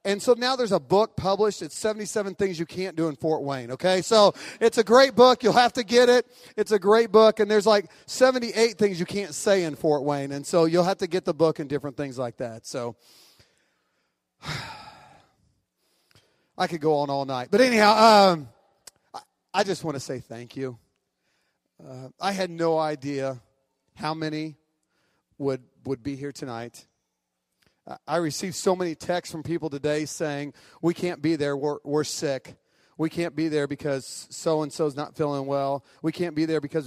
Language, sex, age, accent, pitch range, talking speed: English, male, 40-59, American, 140-190 Hz, 185 wpm